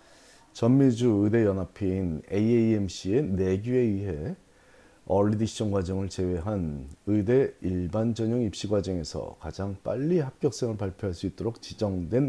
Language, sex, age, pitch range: Korean, male, 40-59, 95-115 Hz